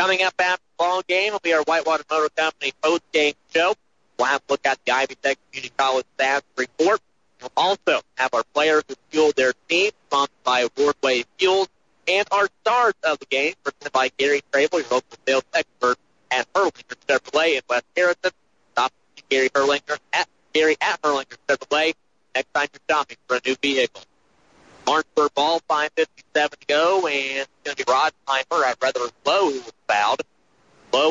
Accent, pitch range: American, 135-160 Hz